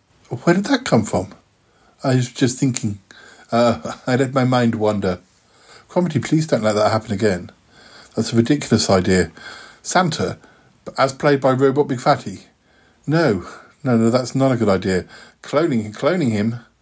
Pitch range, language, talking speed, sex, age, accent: 110-135 Hz, English, 160 wpm, male, 50-69, British